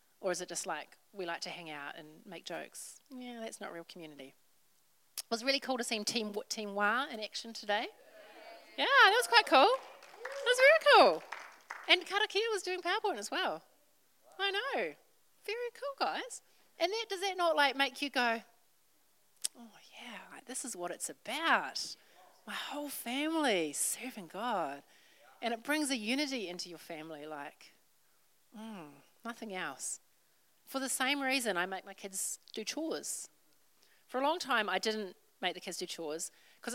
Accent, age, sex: Australian, 40-59, female